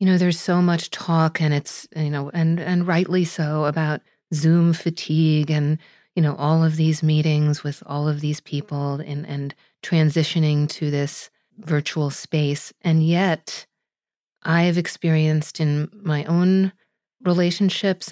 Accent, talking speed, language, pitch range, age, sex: American, 145 wpm, English, 145-170 Hz, 40-59, female